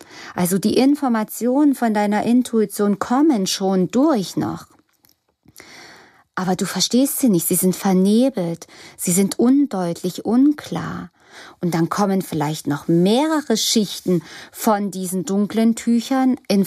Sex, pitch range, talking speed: female, 195-250 Hz, 120 wpm